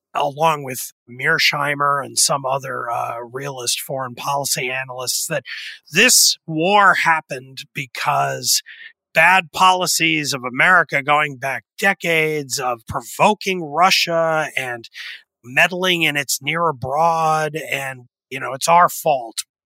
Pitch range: 135-190 Hz